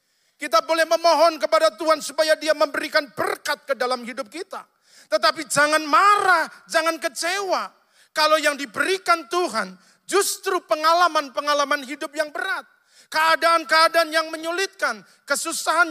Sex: male